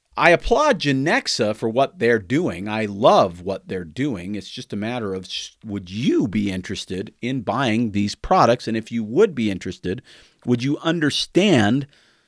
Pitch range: 95-125 Hz